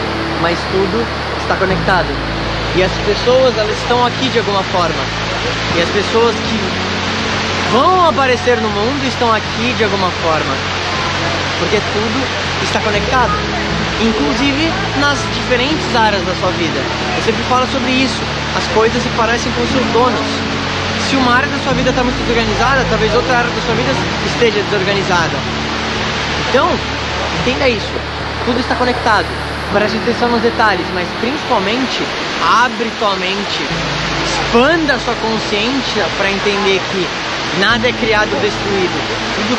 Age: 20-39